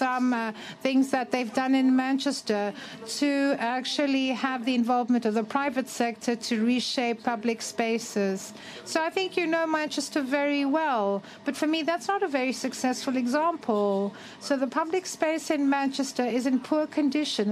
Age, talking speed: 60-79, 165 wpm